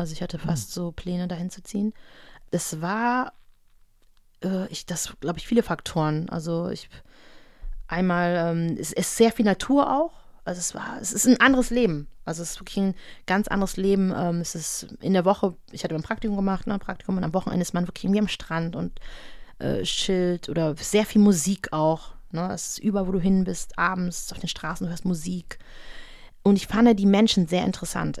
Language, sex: German, female